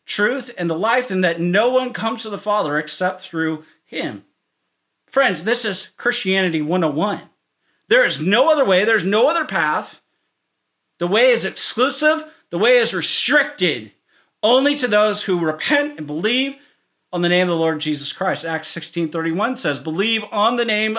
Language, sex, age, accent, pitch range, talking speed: English, male, 40-59, American, 200-305 Hz, 170 wpm